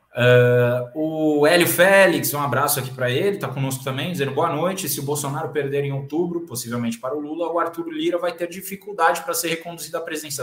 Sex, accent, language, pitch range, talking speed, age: male, Brazilian, Portuguese, 125-175 Hz, 200 wpm, 20-39